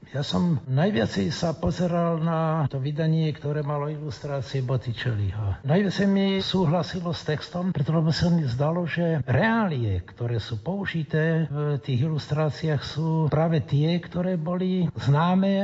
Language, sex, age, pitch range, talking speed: Slovak, male, 60-79, 140-175 Hz, 140 wpm